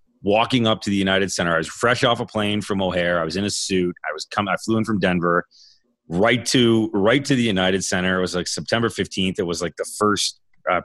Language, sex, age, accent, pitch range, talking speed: English, male, 30-49, American, 90-115 Hz, 250 wpm